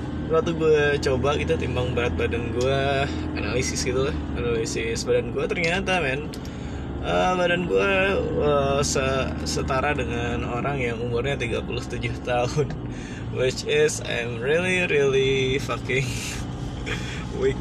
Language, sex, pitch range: Indonesian, male, 115-140 Hz